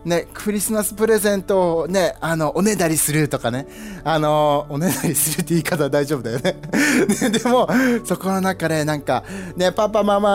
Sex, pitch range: male, 145-200 Hz